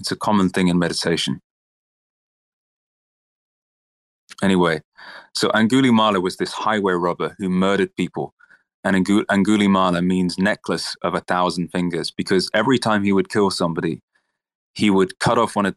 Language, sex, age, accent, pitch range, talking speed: English, male, 20-39, British, 90-100 Hz, 140 wpm